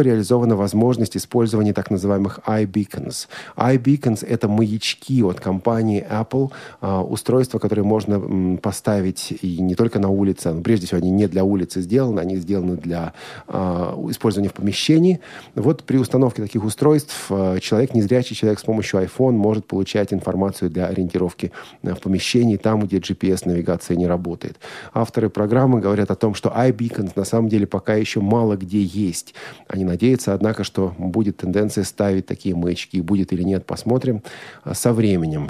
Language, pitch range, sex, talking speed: Russian, 95-115 Hz, male, 150 wpm